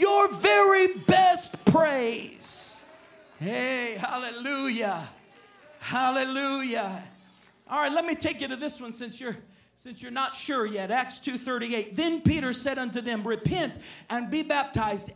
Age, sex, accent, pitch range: 40-59, male, American, 255-325 Hz